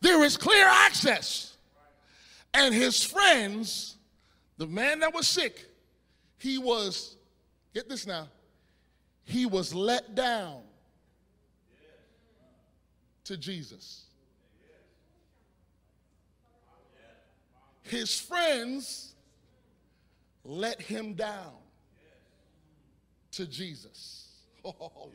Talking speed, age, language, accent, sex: 75 wpm, 30-49, English, American, male